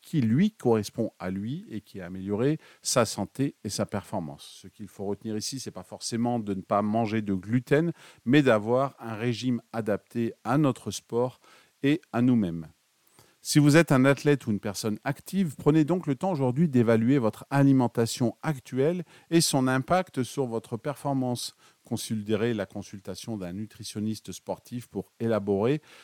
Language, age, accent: French, 40-59, French